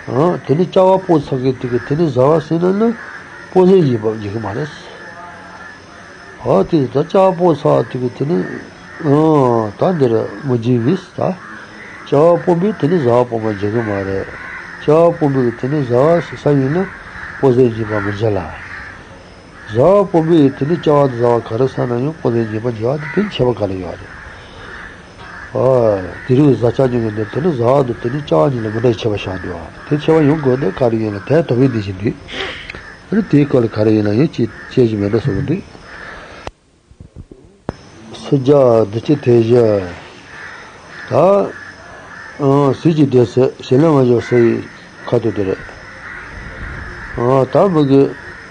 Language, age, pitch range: English, 60-79, 110-150 Hz